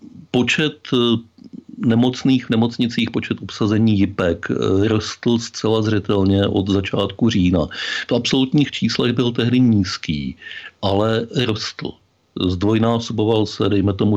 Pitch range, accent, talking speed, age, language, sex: 95-115 Hz, native, 105 wpm, 50-69, Czech, male